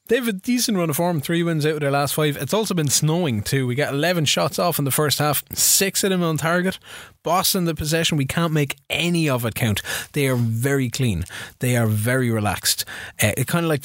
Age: 20-39